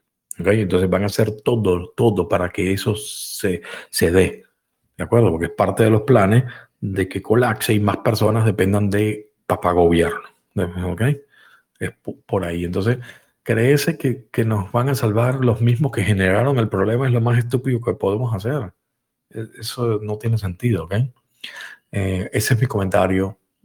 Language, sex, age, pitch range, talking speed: Spanish, male, 50-69, 95-120 Hz, 170 wpm